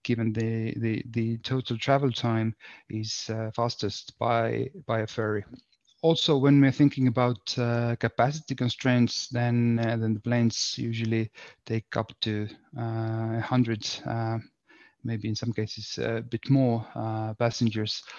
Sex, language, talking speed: male, English, 140 wpm